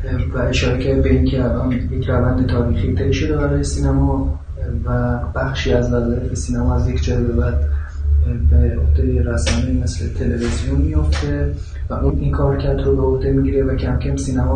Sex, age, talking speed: male, 20-39, 170 wpm